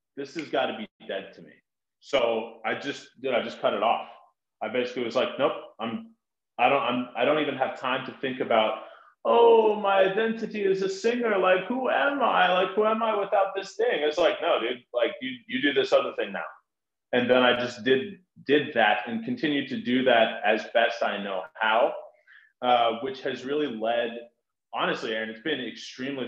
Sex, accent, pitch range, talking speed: male, American, 115-180 Hz, 205 wpm